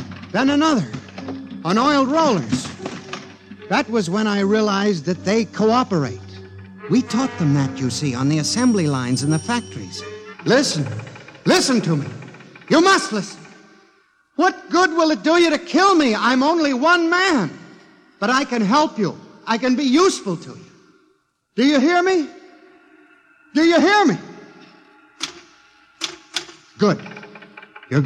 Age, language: 60-79, English